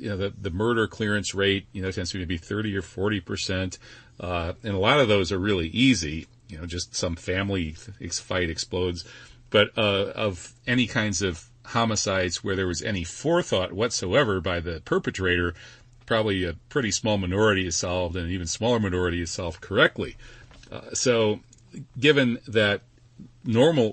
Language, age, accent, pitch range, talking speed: English, 40-59, American, 95-120 Hz, 175 wpm